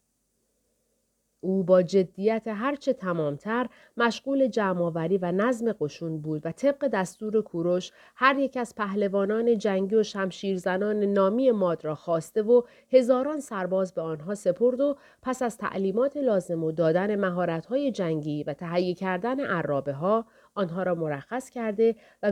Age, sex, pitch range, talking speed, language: 40-59, female, 170-235 Hz, 135 wpm, Persian